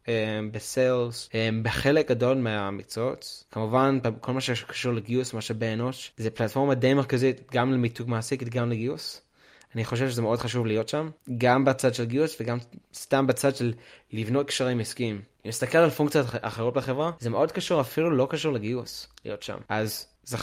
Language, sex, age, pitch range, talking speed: Hebrew, male, 20-39, 115-135 Hz, 160 wpm